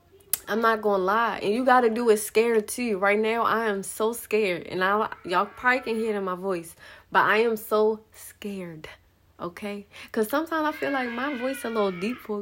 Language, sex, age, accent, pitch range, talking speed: English, female, 20-39, American, 175-215 Hz, 225 wpm